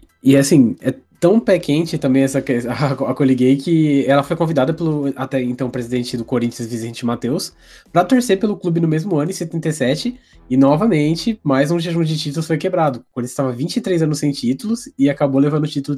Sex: male